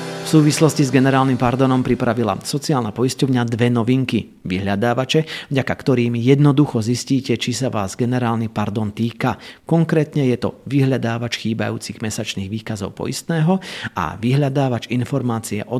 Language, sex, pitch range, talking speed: Slovak, male, 115-145 Hz, 125 wpm